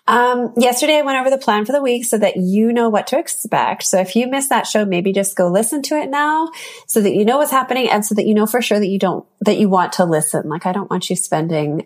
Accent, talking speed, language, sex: American, 290 wpm, English, female